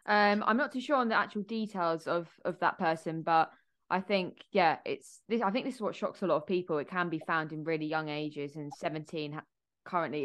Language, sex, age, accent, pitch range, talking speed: English, female, 20-39, British, 155-180 Hz, 230 wpm